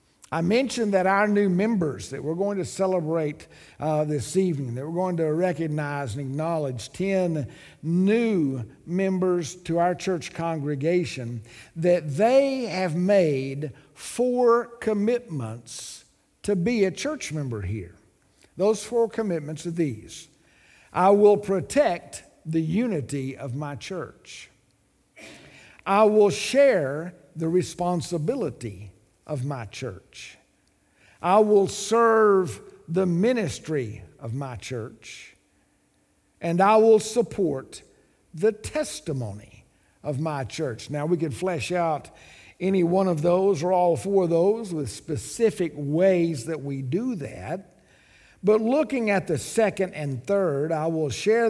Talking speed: 125 wpm